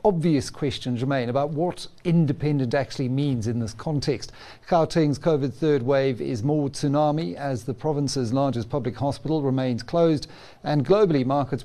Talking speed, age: 150 wpm, 50-69